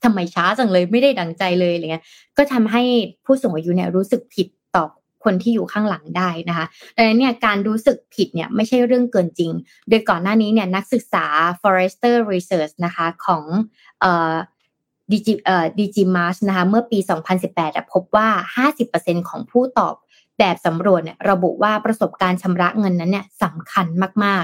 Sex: female